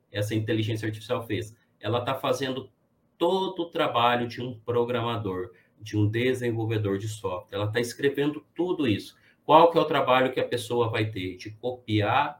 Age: 30-49